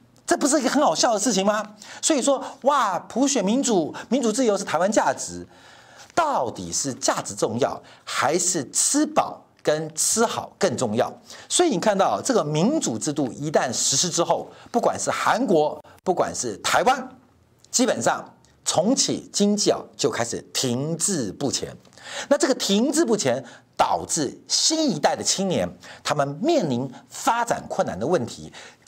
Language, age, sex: Chinese, 50-69, male